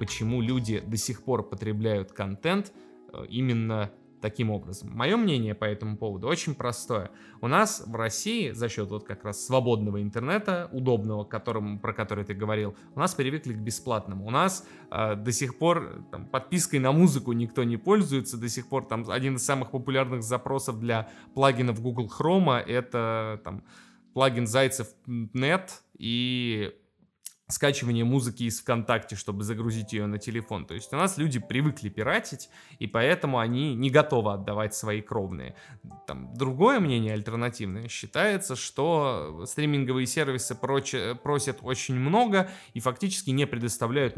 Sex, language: male, Russian